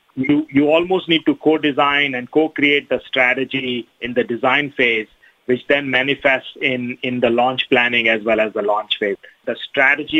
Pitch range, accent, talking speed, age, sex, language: 125-145 Hz, Indian, 175 wpm, 30-49, male, English